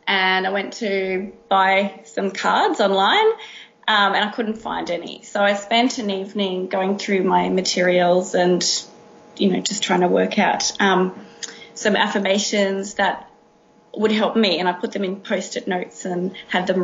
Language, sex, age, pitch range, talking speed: English, female, 20-39, 185-210 Hz, 170 wpm